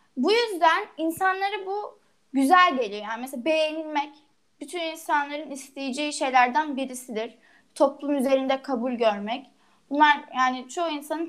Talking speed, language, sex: 115 wpm, Turkish, female